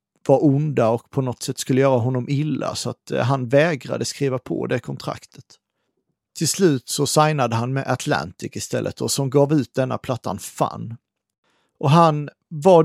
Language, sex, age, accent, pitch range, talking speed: Swedish, male, 40-59, native, 125-155 Hz, 170 wpm